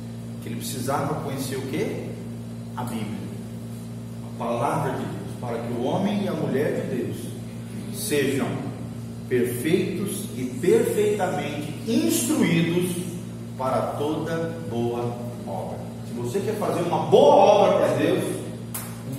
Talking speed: 125 wpm